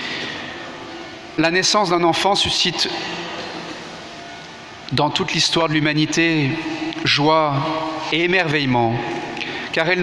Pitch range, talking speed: 155-180 Hz, 90 wpm